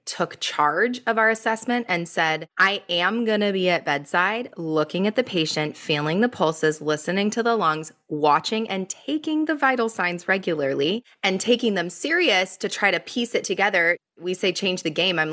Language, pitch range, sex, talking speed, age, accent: English, 170-235 Hz, female, 190 wpm, 20-39, American